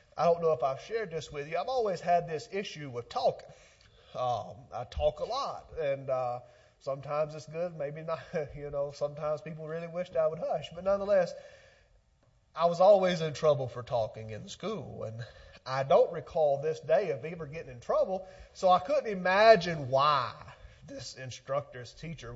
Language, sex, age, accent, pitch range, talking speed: English, male, 30-49, American, 120-170 Hz, 180 wpm